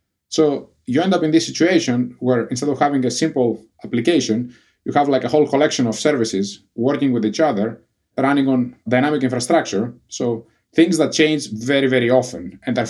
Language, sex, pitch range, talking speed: English, male, 110-140 Hz, 180 wpm